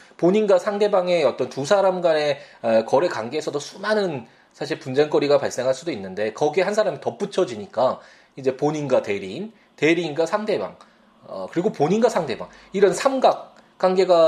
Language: Korean